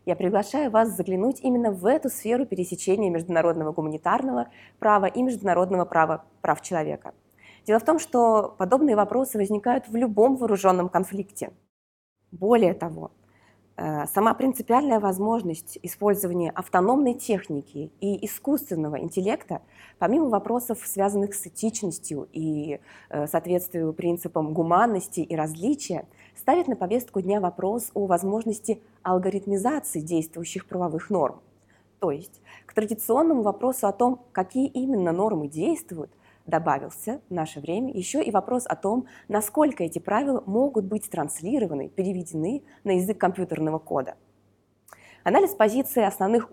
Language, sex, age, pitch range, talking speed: English, female, 20-39, 170-230 Hz, 125 wpm